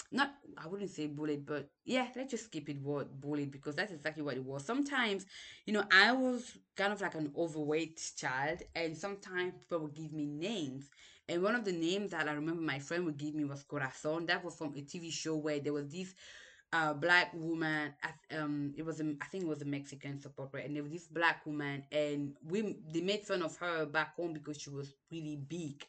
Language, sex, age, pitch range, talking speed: English, female, 20-39, 150-180 Hz, 225 wpm